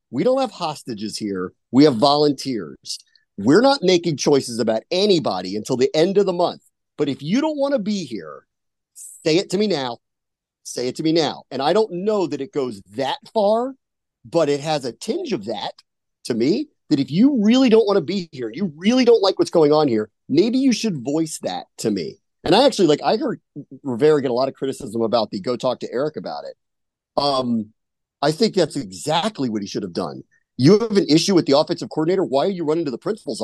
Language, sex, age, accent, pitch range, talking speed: English, male, 40-59, American, 135-210 Hz, 225 wpm